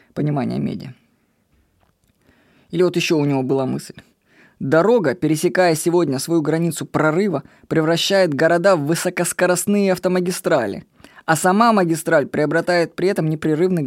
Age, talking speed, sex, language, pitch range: 20-39, 115 wpm, female, Russian, 160-205 Hz